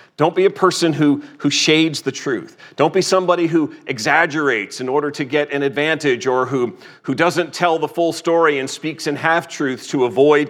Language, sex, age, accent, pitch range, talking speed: English, male, 40-59, American, 130-170 Hz, 195 wpm